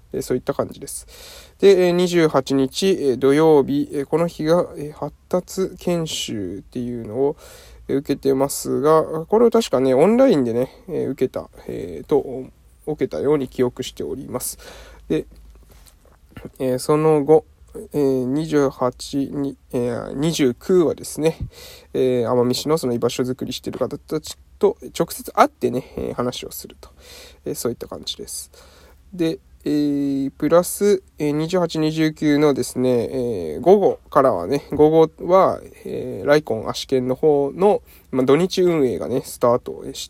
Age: 20-39